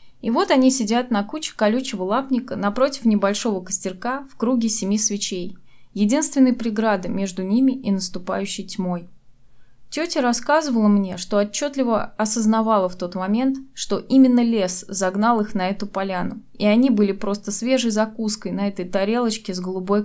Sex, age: female, 20-39